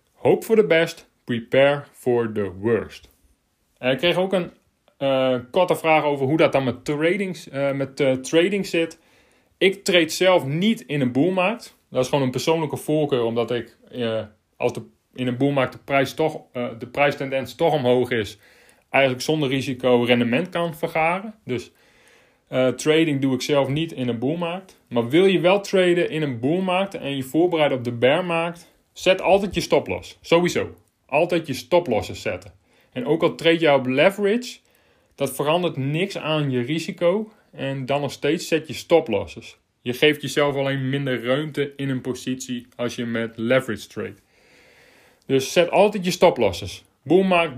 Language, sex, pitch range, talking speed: Dutch, male, 125-165 Hz, 170 wpm